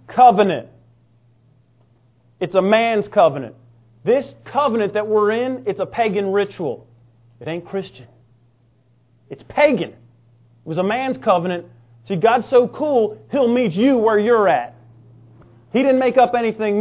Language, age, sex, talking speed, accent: English, 30-49, male, 140 wpm, American